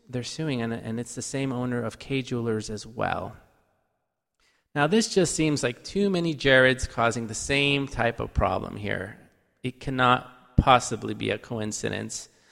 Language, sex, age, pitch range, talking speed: English, male, 30-49, 115-135 Hz, 155 wpm